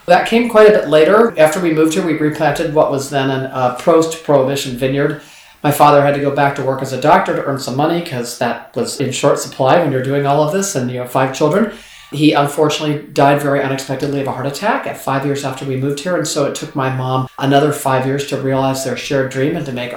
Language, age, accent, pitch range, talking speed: English, 40-59, American, 130-150 Hz, 250 wpm